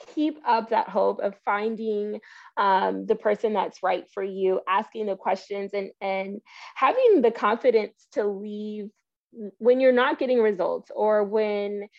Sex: female